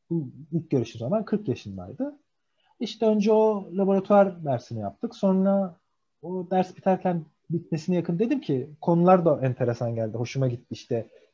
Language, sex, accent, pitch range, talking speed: Turkish, male, native, 115-175 Hz, 145 wpm